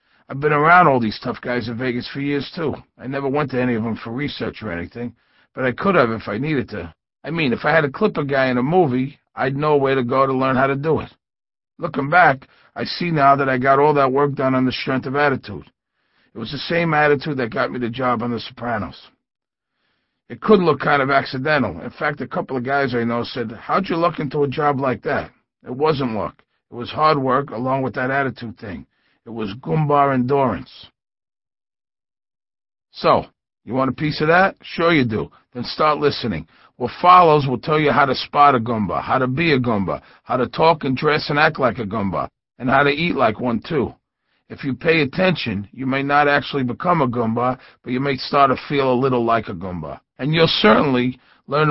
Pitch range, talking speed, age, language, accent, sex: 125-150 Hz, 225 wpm, 50-69, English, American, male